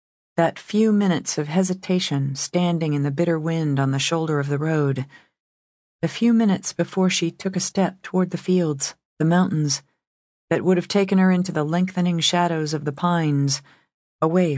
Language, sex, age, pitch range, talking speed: English, female, 40-59, 145-185 Hz, 175 wpm